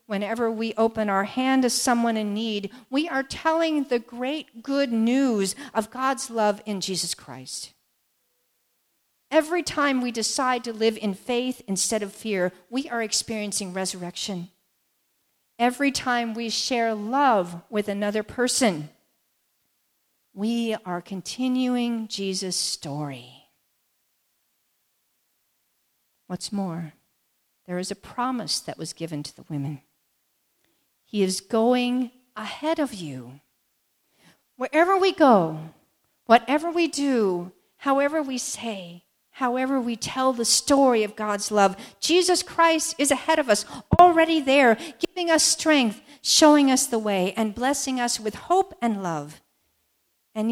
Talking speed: 130 wpm